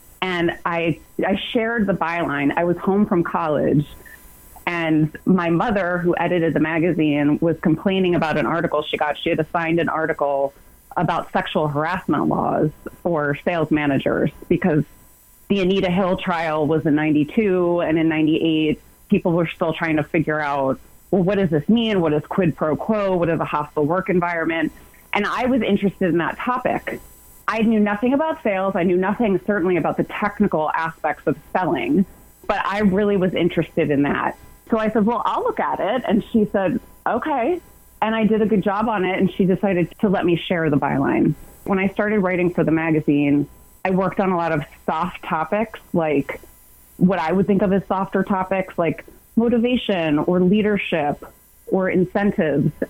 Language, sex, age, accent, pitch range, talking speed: English, female, 30-49, American, 160-200 Hz, 185 wpm